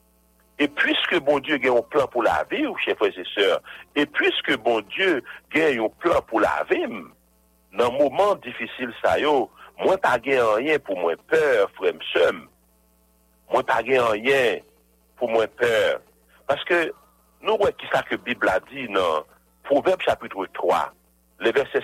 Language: English